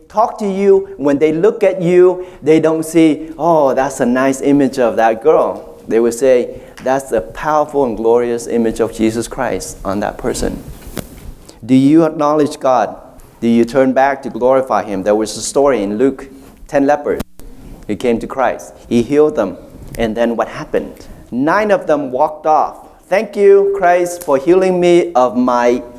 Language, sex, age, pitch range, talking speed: English, male, 30-49, 130-180 Hz, 180 wpm